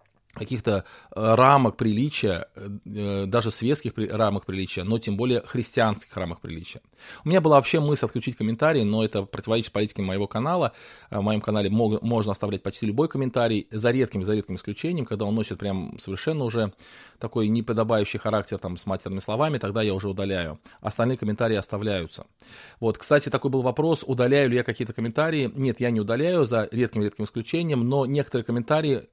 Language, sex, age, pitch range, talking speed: Russian, male, 20-39, 105-125 Hz, 165 wpm